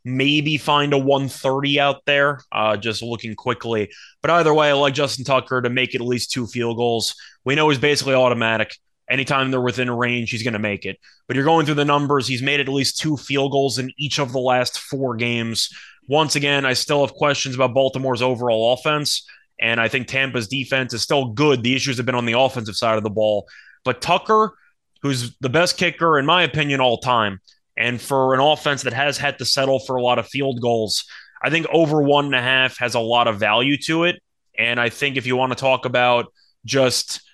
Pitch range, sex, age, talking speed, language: 120-145 Hz, male, 20-39, 220 wpm, English